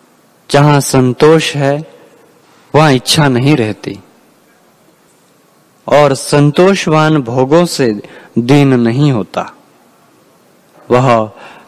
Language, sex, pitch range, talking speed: Hindi, male, 120-155 Hz, 75 wpm